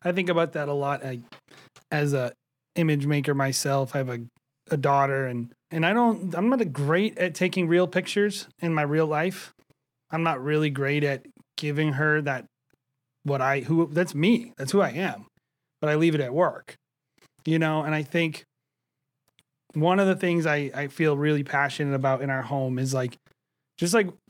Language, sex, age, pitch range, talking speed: English, male, 30-49, 135-170 Hz, 195 wpm